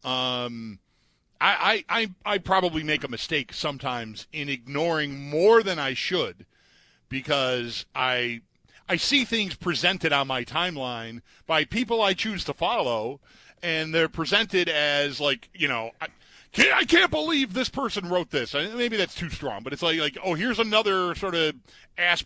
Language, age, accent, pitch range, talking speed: English, 40-59, American, 130-185 Hz, 160 wpm